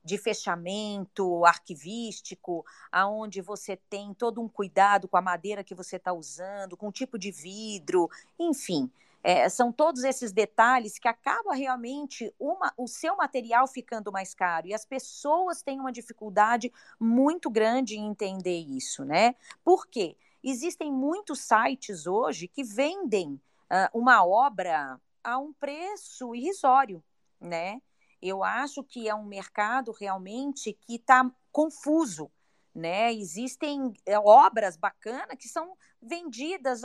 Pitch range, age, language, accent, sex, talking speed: 195-275 Hz, 40-59, Portuguese, Brazilian, female, 130 wpm